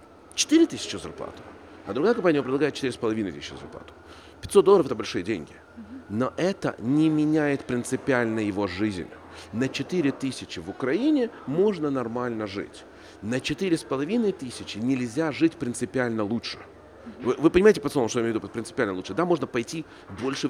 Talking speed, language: 145 wpm, Ukrainian